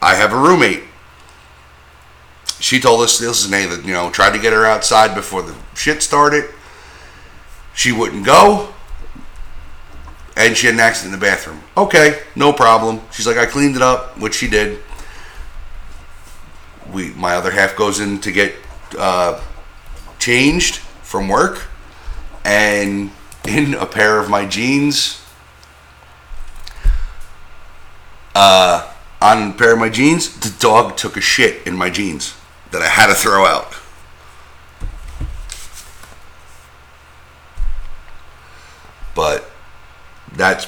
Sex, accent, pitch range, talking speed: male, American, 65-105 Hz, 125 wpm